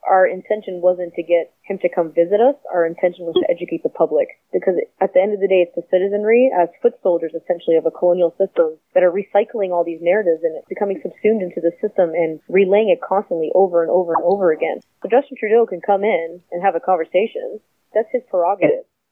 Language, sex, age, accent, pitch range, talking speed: English, female, 20-39, American, 170-205 Hz, 225 wpm